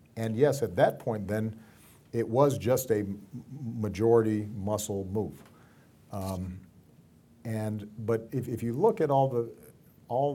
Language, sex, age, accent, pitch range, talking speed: English, male, 50-69, American, 95-120 Hz, 140 wpm